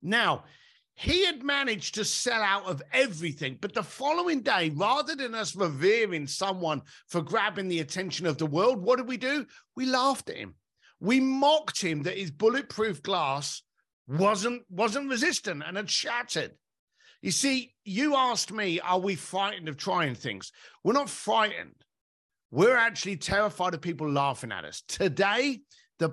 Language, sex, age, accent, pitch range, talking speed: English, male, 50-69, British, 170-250 Hz, 160 wpm